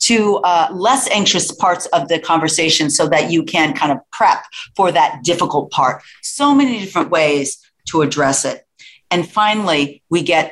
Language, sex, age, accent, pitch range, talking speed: English, female, 40-59, American, 150-185 Hz, 170 wpm